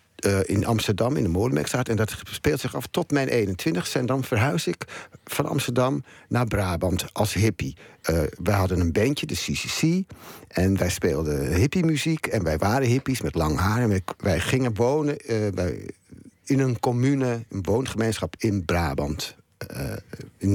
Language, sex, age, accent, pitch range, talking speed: Dutch, male, 60-79, Dutch, 95-125 Hz, 170 wpm